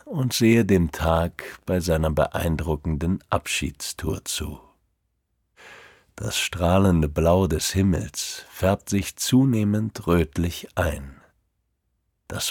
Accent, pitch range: German, 85-110 Hz